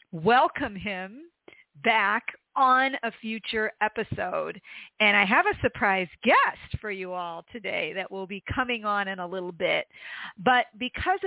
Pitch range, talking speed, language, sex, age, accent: 190-245 Hz, 150 wpm, English, female, 40-59, American